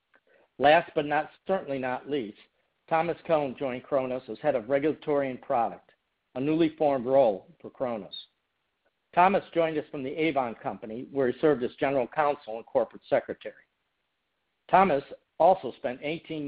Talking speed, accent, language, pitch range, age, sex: 155 wpm, American, English, 125-155 Hz, 50-69, male